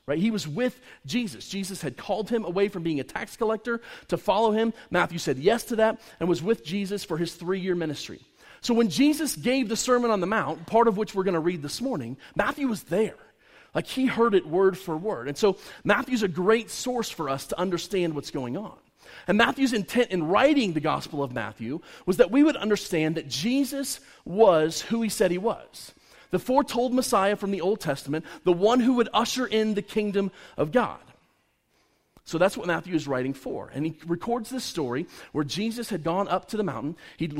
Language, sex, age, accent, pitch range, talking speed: English, male, 30-49, American, 165-225 Hz, 210 wpm